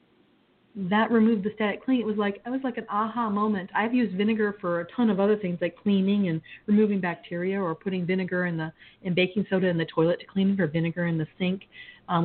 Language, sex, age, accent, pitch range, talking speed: English, female, 40-59, American, 180-220 Hz, 235 wpm